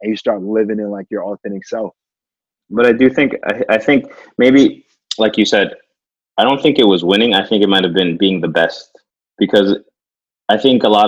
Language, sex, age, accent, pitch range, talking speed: English, male, 20-39, American, 95-110 Hz, 215 wpm